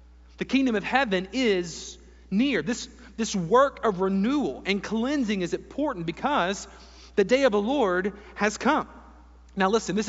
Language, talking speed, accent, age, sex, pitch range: English, 155 wpm, American, 40-59, male, 185-245 Hz